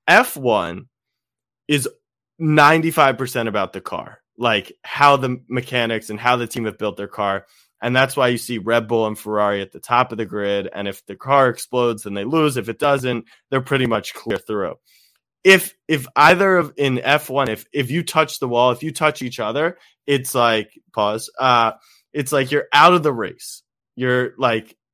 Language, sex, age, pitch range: English, male, 20-39, 115-150 Hz